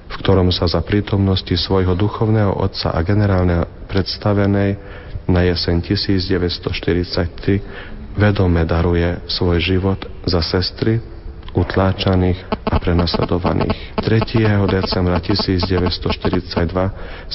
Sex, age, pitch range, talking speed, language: male, 40-59, 90-100 Hz, 90 wpm, Slovak